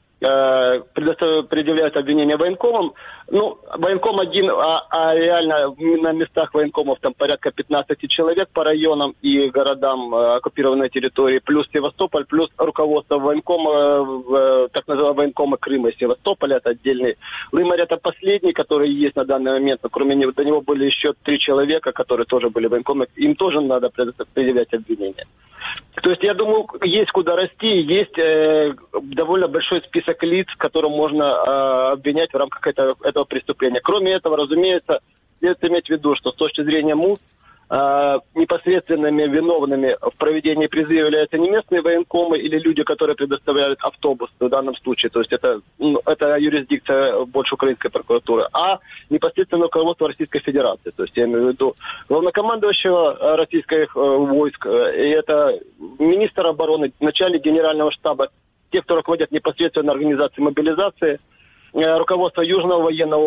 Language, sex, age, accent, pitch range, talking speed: Russian, male, 30-49, native, 140-170 Hz, 145 wpm